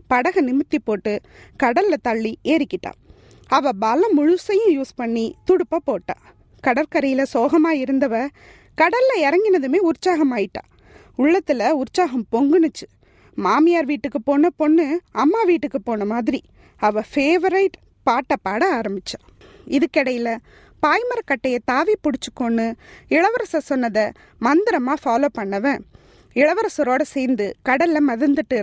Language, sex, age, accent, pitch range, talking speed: Tamil, female, 20-39, native, 255-345 Hz, 100 wpm